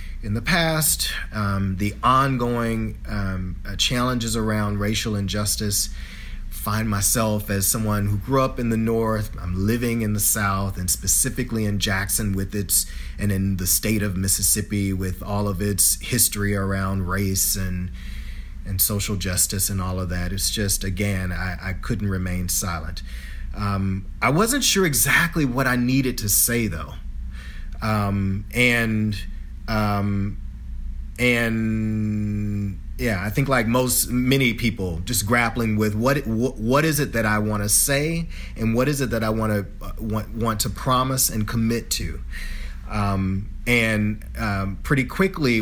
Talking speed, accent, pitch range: 155 wpm, American, 95-115 Hz